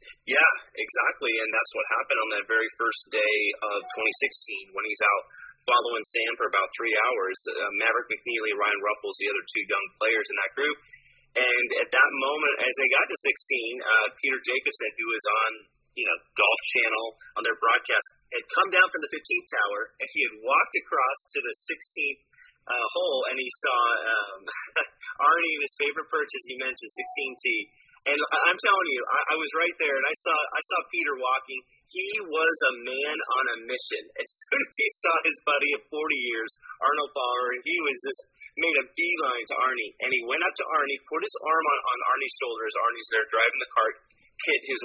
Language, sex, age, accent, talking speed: English, male, 30-49, American, 200 wpm